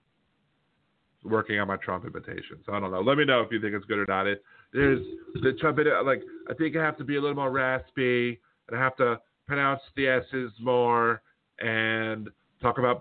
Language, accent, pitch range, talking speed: English, American, 100-135 Hz, 210 wpm